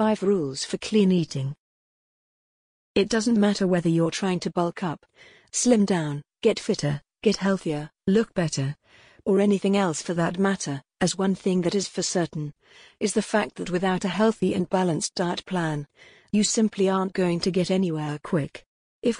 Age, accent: 40-59, British